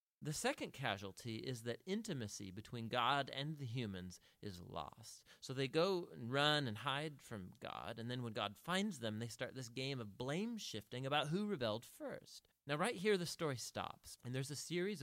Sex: male